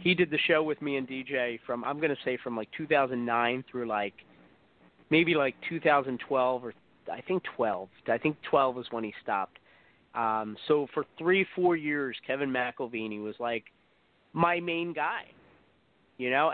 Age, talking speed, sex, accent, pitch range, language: 30-49, 175 wpm, male, American, 130-185 Hz, English